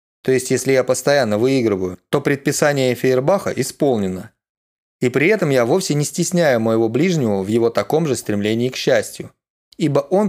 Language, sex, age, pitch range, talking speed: Russian, male, 20-39, 115-150 Hz, 165 wpm